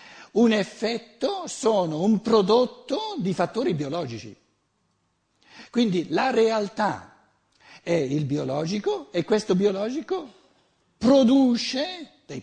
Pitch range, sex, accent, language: 155-215 Hz, male, native, Italian